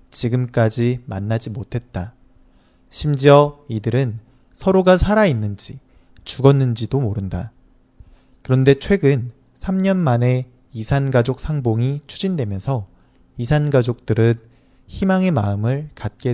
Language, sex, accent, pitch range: Chinese, male, Korean, 105-145 Hz